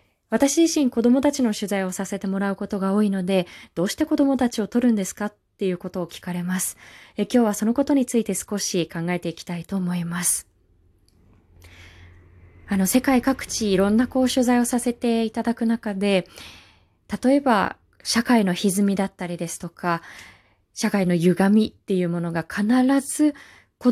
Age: 20-39